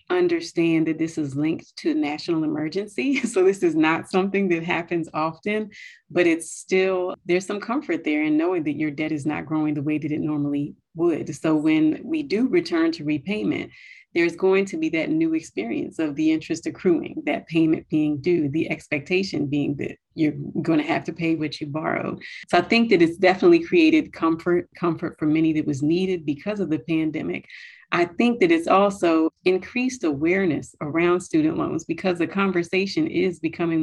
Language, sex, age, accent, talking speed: English, female, 30-49, American, 190 wpm